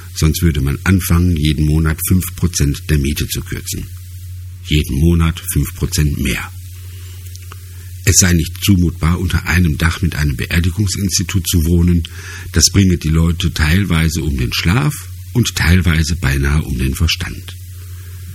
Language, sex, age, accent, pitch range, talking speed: German, male, 50-69, German, 85-95 Hz, 135 wpm